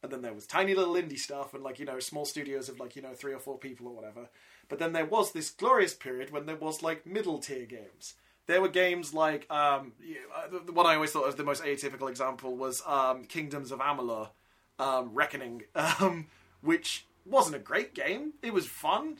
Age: 20-39